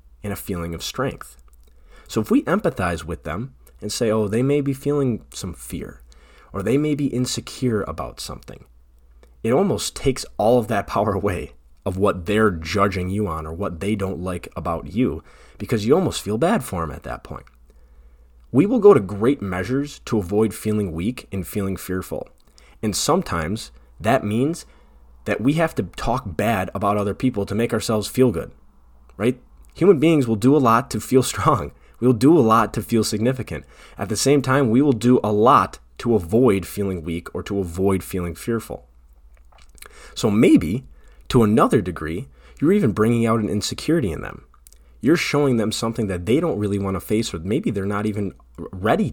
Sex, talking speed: male, 190 wpm